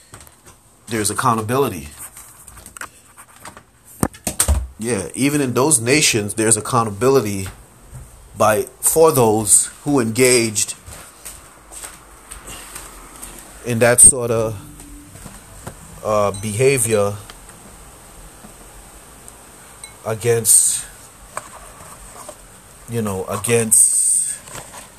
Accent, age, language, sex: American, 30-49, English, male